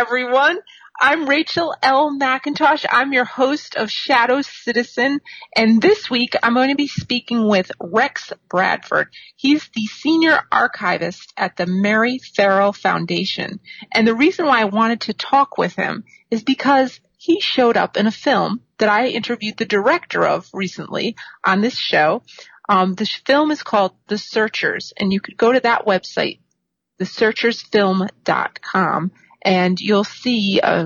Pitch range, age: 195-255 Hz, 30-49